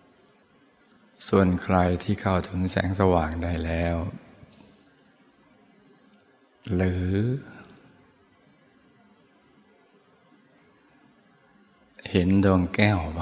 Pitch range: 85-95 Hz